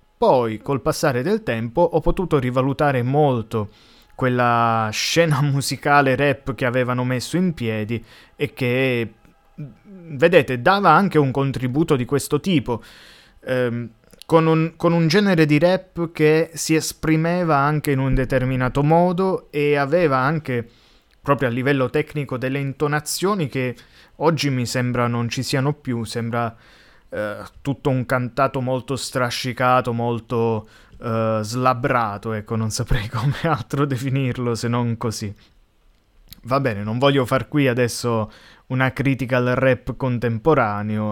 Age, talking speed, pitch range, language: 20-39, 135 wpm, 120-155 Hz, Italian